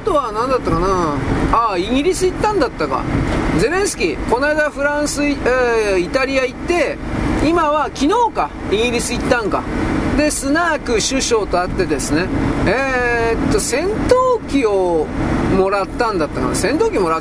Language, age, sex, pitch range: Japanese, 40-59, male, 200-315 Hz